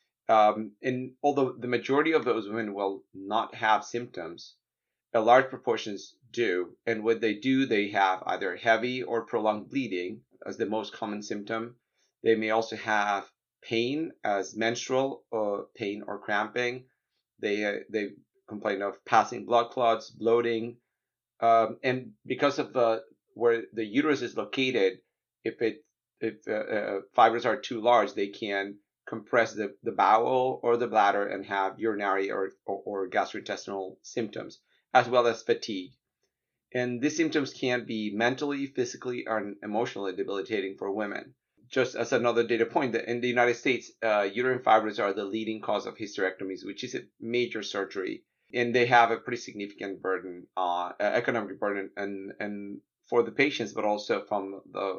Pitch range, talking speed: 100-125 Hz, 160 wpm